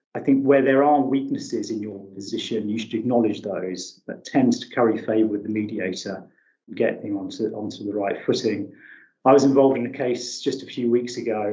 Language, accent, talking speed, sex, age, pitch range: English, British, 205 wpm, male, 30-49, 110-130 Hz